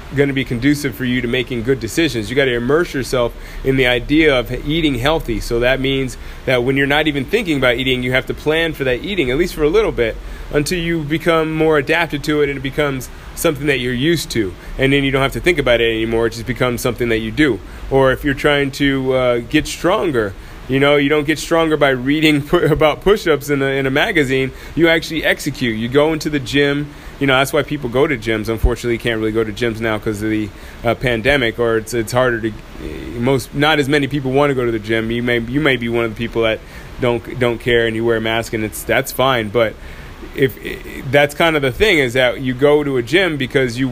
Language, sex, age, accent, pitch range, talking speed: English, male, 20-39, American, 120-145 Hz, 250 wpm